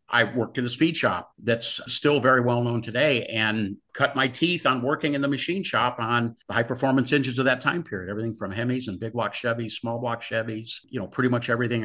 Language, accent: English, American